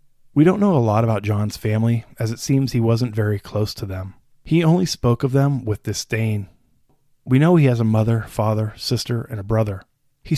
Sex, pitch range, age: male, 105-125 Hz, 20-39